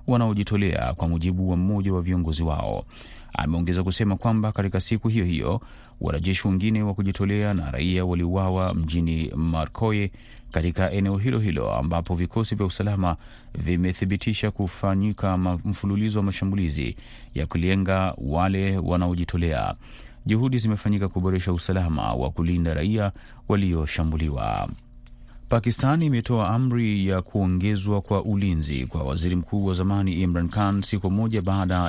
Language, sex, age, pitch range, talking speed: Swahili, male, 30-49, 85-100 Hz, 125 wpm